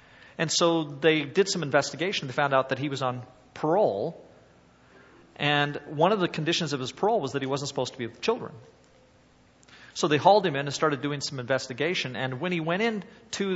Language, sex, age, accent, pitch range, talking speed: English, male, 40-59, American, 125-150 Hz, 210 wpm